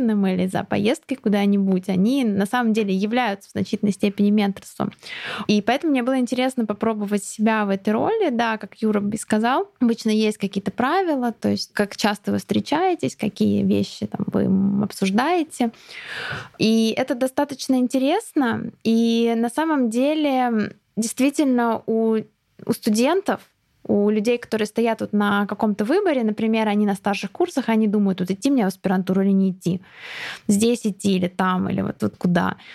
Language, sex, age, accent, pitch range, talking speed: Russian, female, 20-39, native, 200-255 Hz, 155 wpm